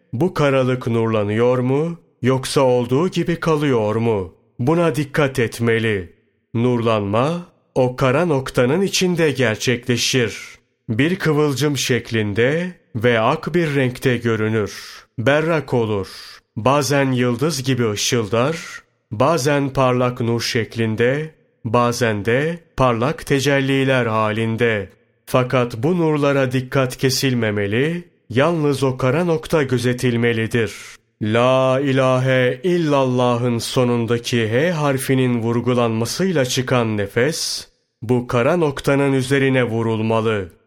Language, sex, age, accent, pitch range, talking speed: Turkish, male, 30-49, native, 115-145 Hz, 95 wpm